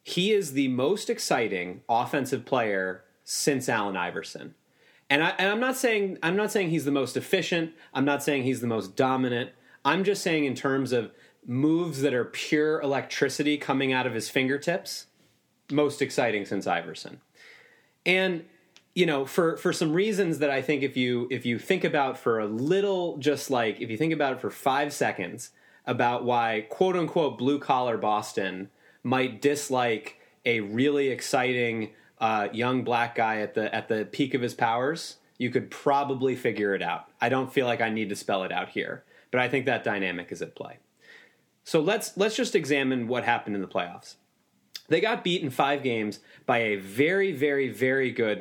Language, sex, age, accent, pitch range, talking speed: English, male, 30-49, American, 115-155 Hz, 180 wpm